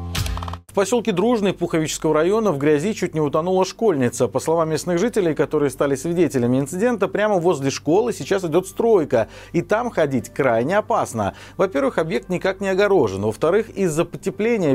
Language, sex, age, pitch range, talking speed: Russian, male, 40-59, 150-195 Hz, 155 wpm